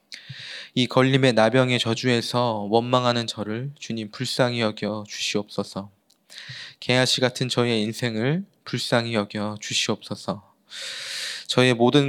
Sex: male